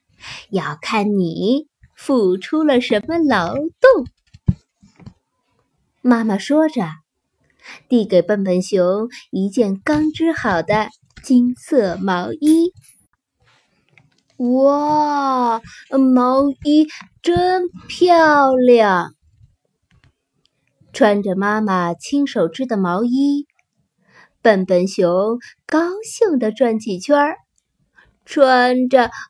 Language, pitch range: Chinese, 205-285 Hz